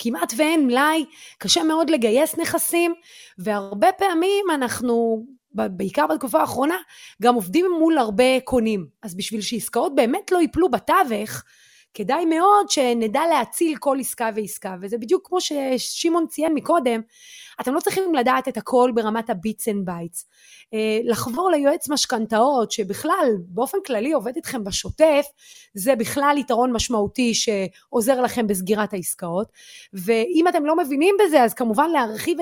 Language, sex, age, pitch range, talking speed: Hebrew, female, 30-49, 225-325 Hz, 135 wpm